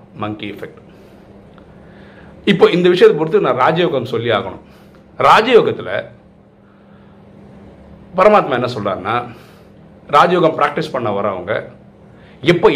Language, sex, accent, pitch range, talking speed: Tamil, male, native, 115-170 Hz, 90 wpm